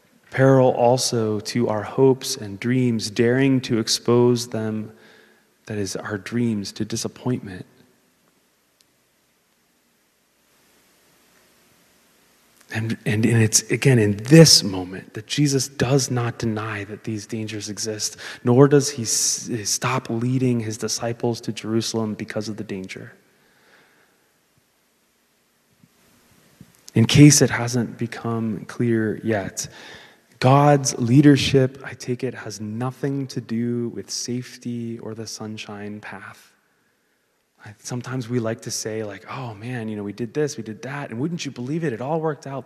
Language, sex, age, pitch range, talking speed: English, male, 30-49, 110-135 Hz, 130 wpm